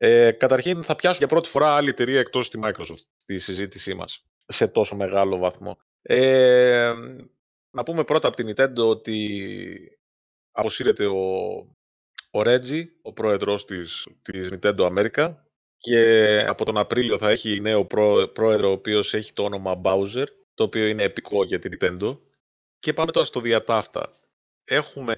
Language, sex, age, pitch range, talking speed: Greek, male, 30-49, 100-140 Hz, 155 wpm